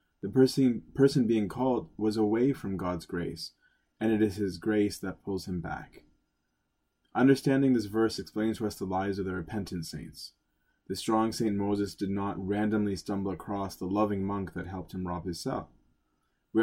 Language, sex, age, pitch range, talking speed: English, male, 20-39, 90-110 Hz, 175 wpm